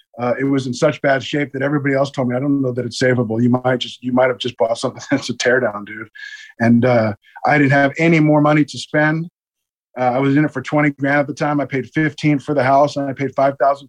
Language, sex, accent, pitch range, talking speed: English, male, American, 135-165 Hz, 270 wpm